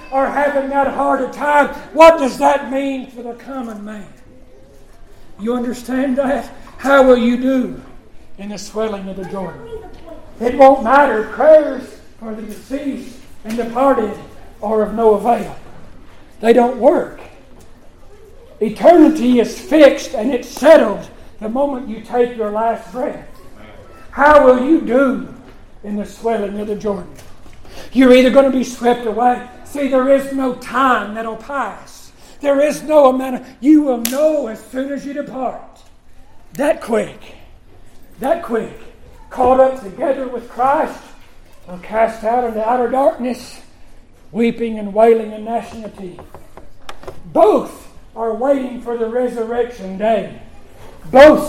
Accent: American